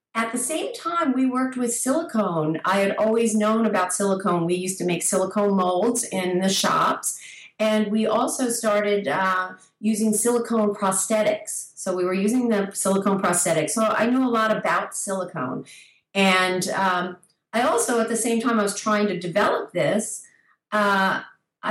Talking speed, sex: 165 wpm, female